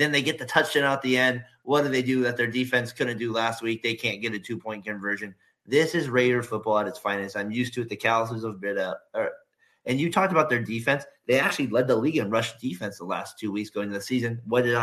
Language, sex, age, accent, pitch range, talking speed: English, male, 30-49, American, 110-145 Hz, 265 wpm